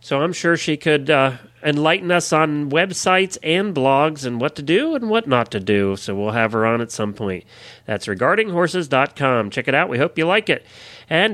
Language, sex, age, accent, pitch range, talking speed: English, male, 40-59, American, 120-175 Hz, 210 wpm